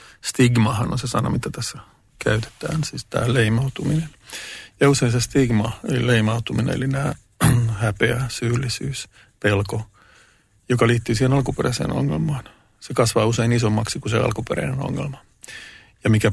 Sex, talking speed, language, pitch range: male, 130 wpm, Finnish, 105-125 Hz